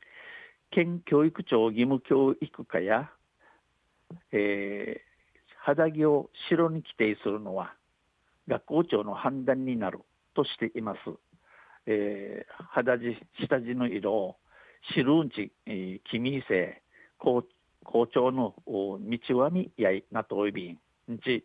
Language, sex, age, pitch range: Japanese, male, 60-79, 110-145 Hz